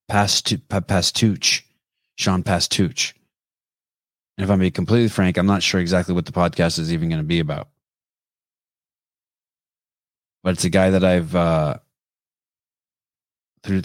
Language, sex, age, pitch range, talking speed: English, male, 20-39, 85-110 Hz, 130 wpm